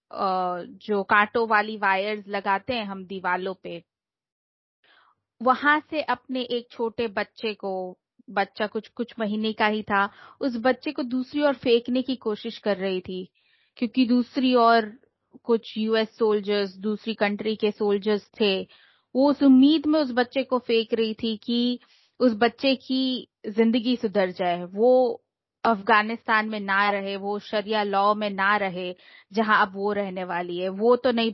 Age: 20-39